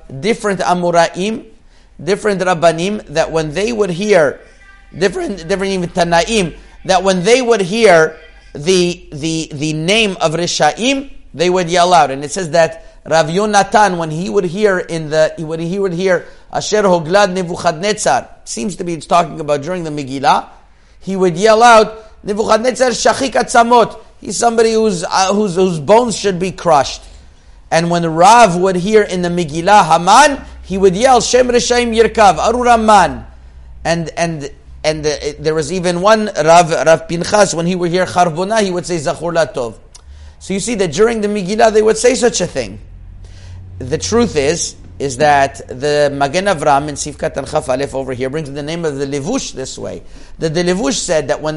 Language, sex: English, male